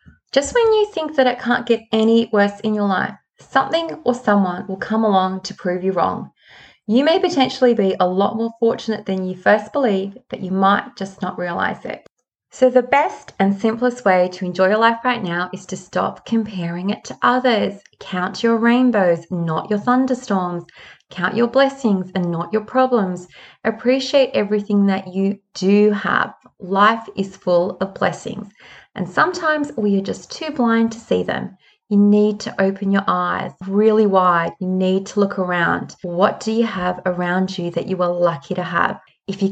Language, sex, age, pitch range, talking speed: English, female, 20-39, 185-235 Hz, 185 wpm